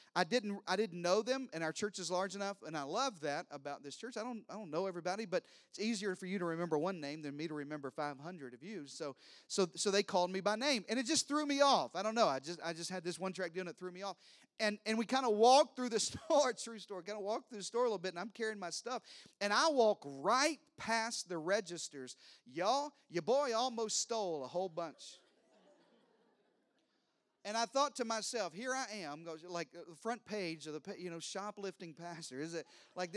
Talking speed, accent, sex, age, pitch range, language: 240 wpm, American, male, 40-59, 170-225 Hz, English